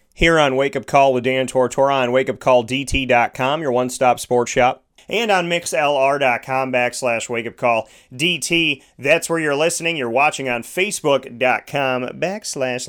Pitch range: 130-160 Hz